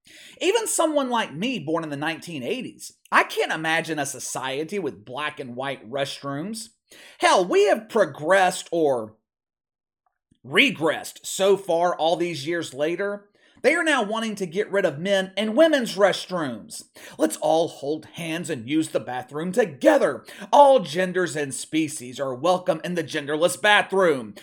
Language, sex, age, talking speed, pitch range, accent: English, male, 30-49, 150 wpm, 145-225 Hz, American